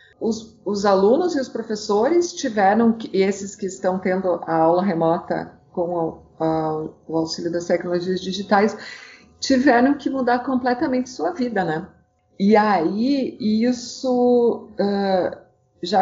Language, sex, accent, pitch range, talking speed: Portuguese, female, Brazilian, 175-225 Hz, 130 wpm